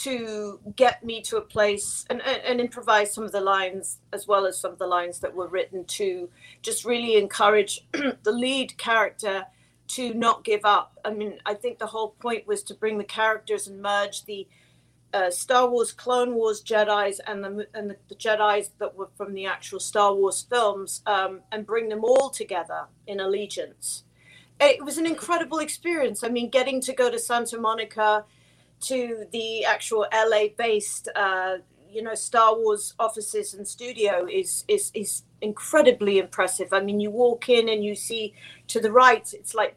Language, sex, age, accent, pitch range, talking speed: English, female, 40-59, British, 200-245 Hz, 180 wpm